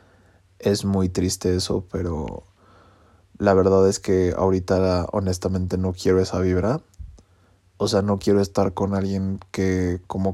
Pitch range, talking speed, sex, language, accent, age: 95-100 Hz, 140 wpm, male, English, Mexican, 20-39